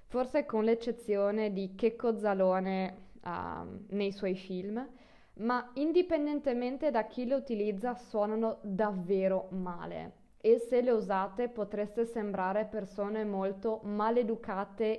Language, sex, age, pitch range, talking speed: Italian, female, 20-39, 195-250 Hz, 110 wpm